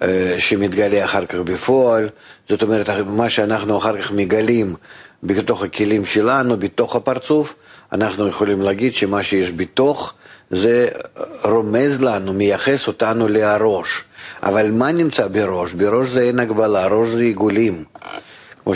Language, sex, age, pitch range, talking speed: Hebrew, male, 50-69, 100-115 Hz, 130 wpm